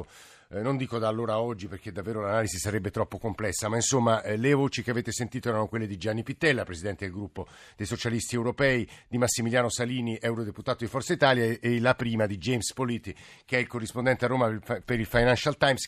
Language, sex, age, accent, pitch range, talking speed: Italian, male, 50-69, native, 110-130 Hz, 210 wpm